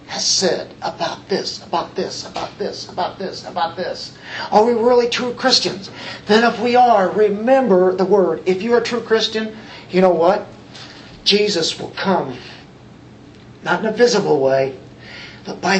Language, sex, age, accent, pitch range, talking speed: English, male, 50-69, American, 185-245 Hz, 165 wpm